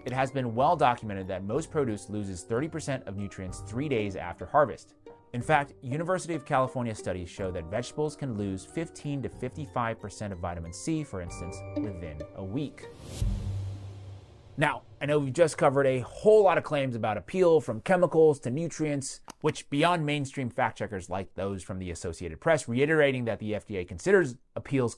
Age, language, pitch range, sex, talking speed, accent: 30-49, English, 100-150 Hz, male, 180 wpm, American